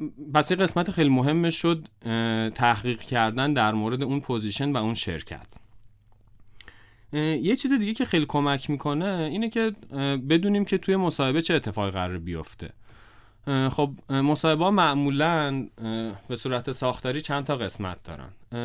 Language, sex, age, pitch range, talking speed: Persian, male, 30-49, 110-150 Hz, 130 wpm